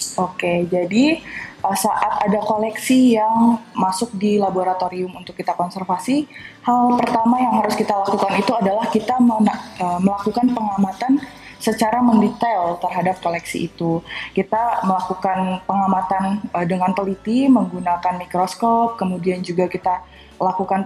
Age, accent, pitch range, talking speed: 20-39, native, 185-225 Hz, 110 wpm